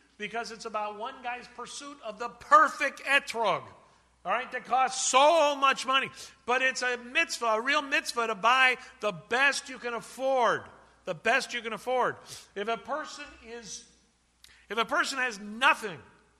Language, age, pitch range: English, 50-69, 210-255 Hz